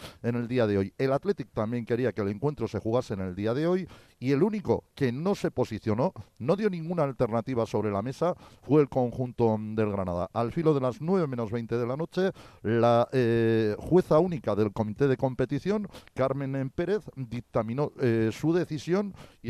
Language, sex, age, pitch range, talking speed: Spanish, male, 40-59, 110-145 Hz, 195 wpm